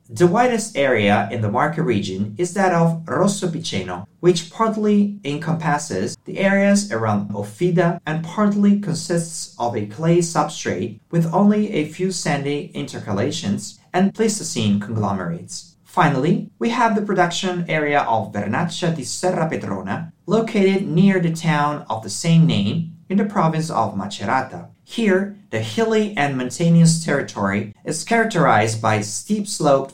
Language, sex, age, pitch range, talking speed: English, male, 40-59, 125-185 Hz, 140 wpm